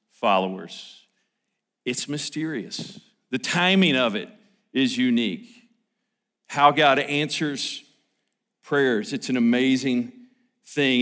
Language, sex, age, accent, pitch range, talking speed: English, male, 50-69, American, 145-190 Hz, 95 wpm